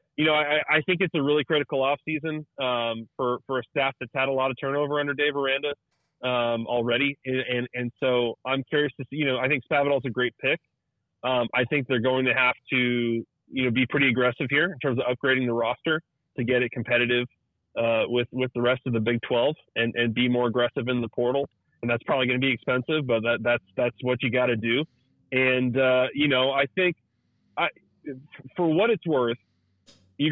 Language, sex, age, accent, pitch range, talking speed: English, male, 30-49, American, 120-145 Hz, 220 wpm